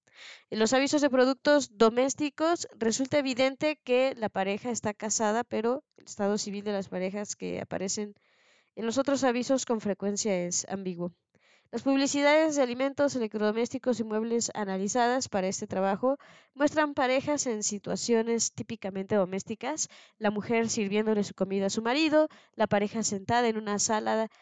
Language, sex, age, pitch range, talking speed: Spanish, female, 20-39, 195-240 Hz, 150 wpm